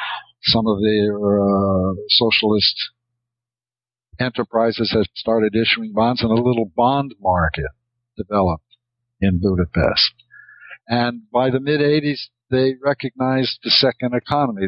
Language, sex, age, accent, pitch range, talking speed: English, male, 60-79, American, 100-120 Hz, 110 wpm